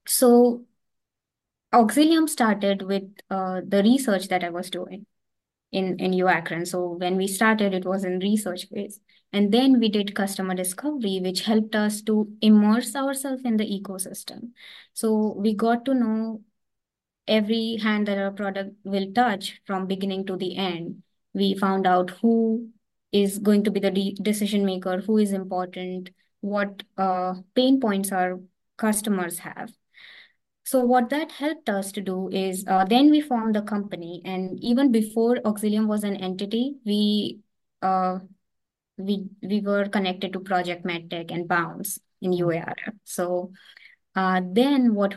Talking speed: 150 wpm